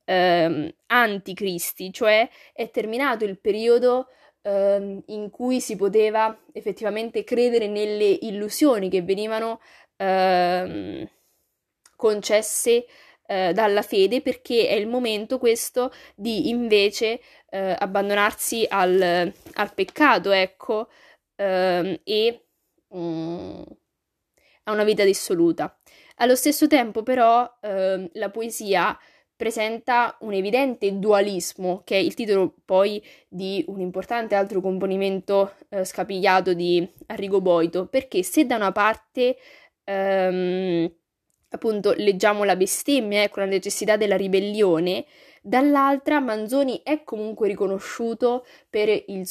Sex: female